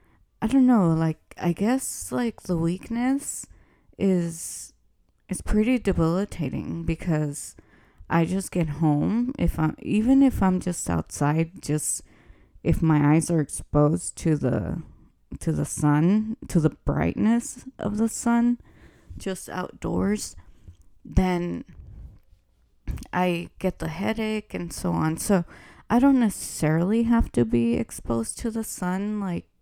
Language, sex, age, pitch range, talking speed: English, female, 20-39, 150-200 Hz, 130 wpm